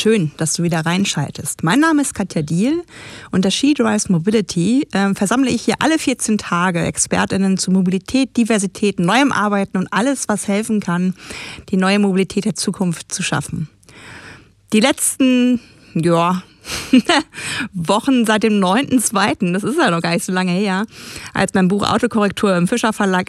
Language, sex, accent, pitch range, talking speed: German, female, German, 185-230 Hz, 160 wpm